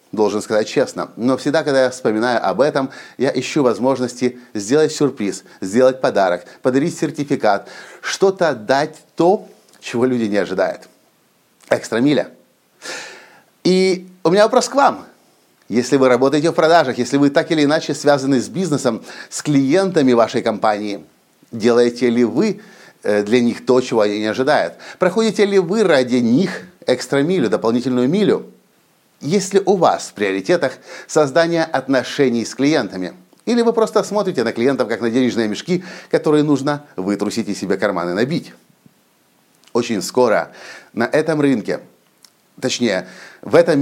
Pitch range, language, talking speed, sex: 120-160 Hz, Russian, 140 wpm, male